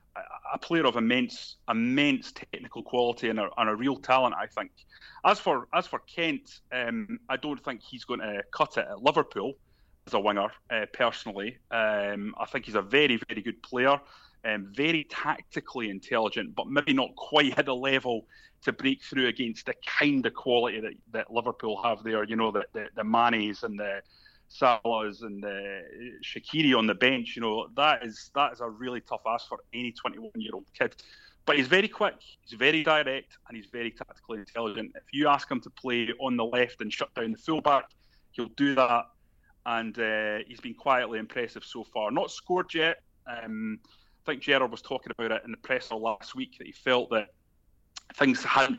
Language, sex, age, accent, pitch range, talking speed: English, male, 30-49, British, 115-155 Hz, 195 wpm